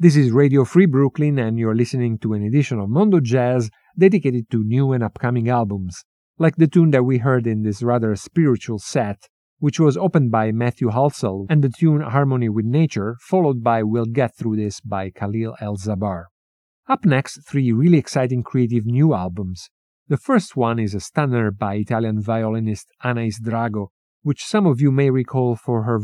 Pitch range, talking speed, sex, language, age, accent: 110-145 Hz, 185 wpm, male, English, 50-69, Italian